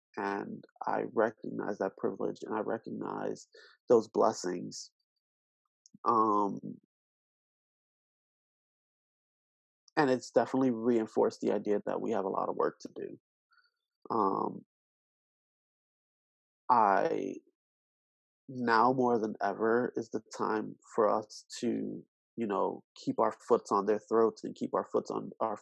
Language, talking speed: English, 120 wpm